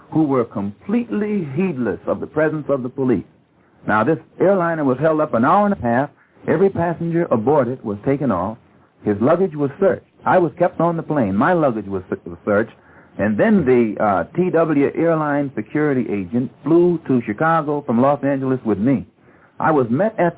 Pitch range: 130-185 Hz